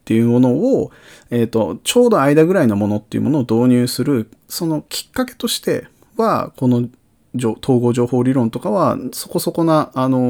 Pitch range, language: 105-130 Hz, Japanese